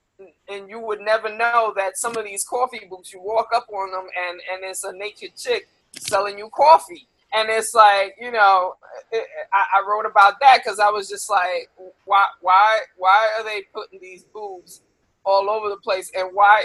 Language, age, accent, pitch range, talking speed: English, 20-39, American, 195-255 Hz, 200 wpm